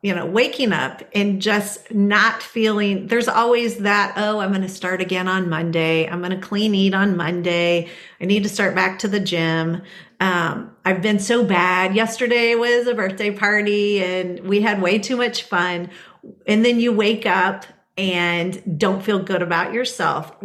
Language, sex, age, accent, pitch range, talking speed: English, female, 40-59, American, 185-230 Hz, 180 wpm